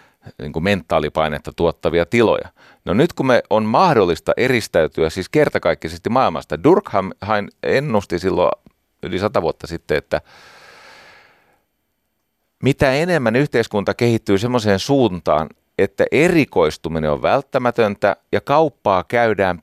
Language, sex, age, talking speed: Finnish, male, 30-49, 105 wpm